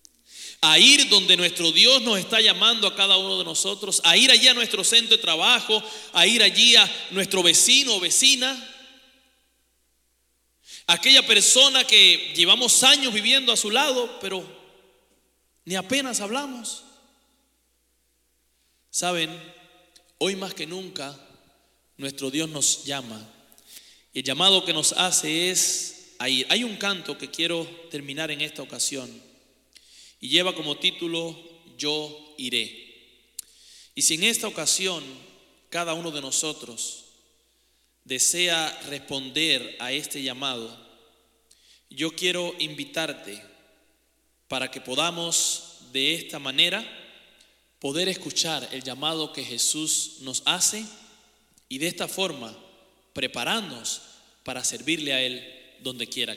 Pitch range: 135-200 Hz